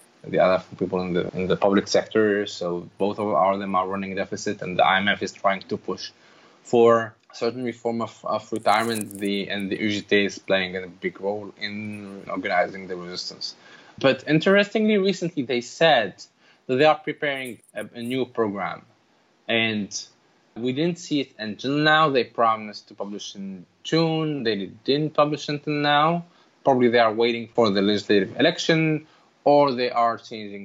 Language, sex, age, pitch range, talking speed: English, male, 20-39, 110-150 Hz, 170 wpm